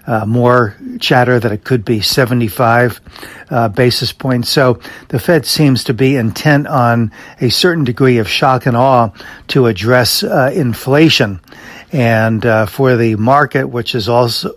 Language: English